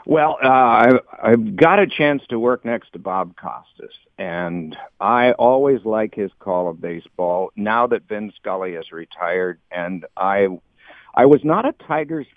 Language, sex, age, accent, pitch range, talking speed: English, male, 50-69, American, 100-130 Hz, 170 wpm